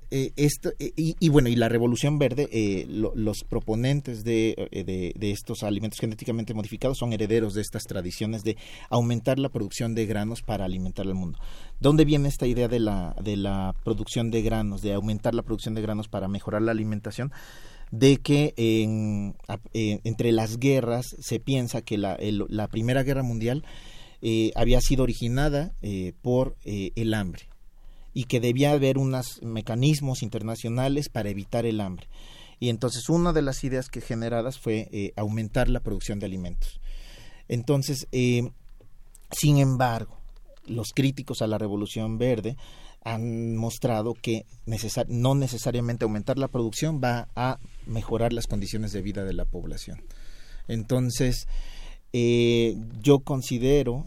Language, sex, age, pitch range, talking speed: Spanish, male, 40-59, 110-125 Hz, 150 wpm